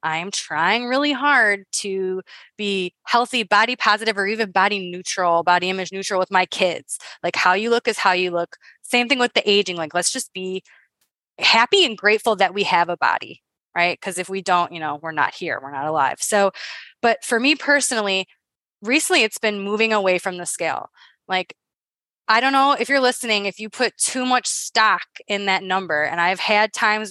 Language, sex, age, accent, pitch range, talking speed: English, female, 20-39, American, 190-245 Hz, 200 wpm